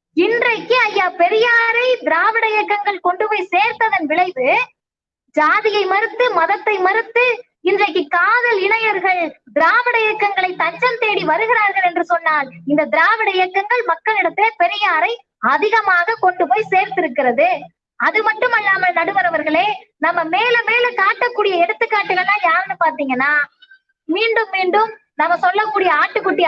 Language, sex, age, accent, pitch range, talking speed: Tamil, female, 20-39, native, 345-445 Hz, 100 wpm